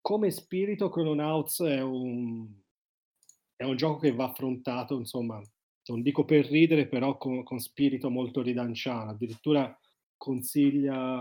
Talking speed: 130 wpm